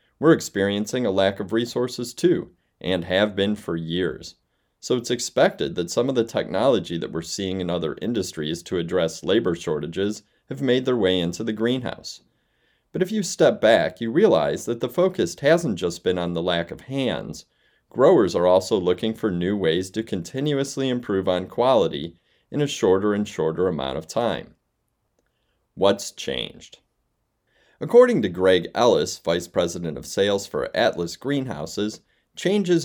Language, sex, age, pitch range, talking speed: English, male, 30-49, 90-125 Hz, 165 wpm